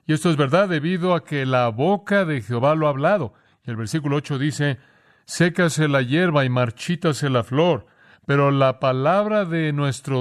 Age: 40-59